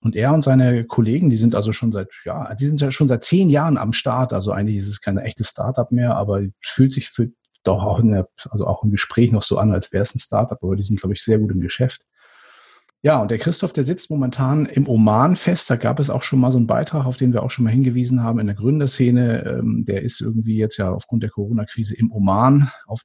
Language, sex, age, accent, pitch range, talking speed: German, male, 40-59, German, 105-130 Hz, 255 wpm